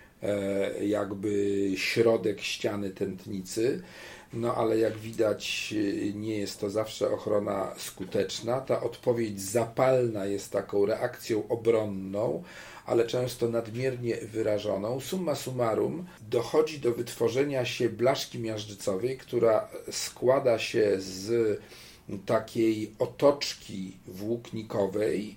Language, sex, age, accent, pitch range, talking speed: Polish, male, 40-59, native, 105-125 Hz, 95 wpm